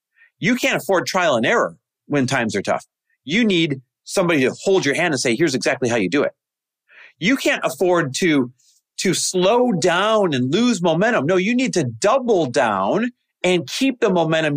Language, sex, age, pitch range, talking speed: English, male, 40-59, 125-205 Hz, 185 wpm